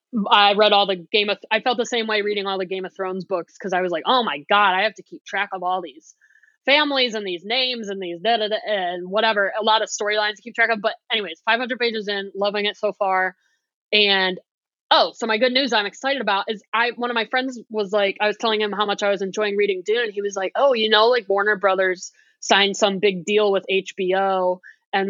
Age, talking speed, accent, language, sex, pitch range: 20-39, 245 wpm, American, English, female, 190-225 Hz